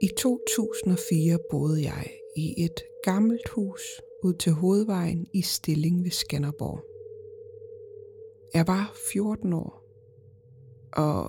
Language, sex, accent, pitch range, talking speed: Danish, female, native, 150-205 Hz, 105 wpm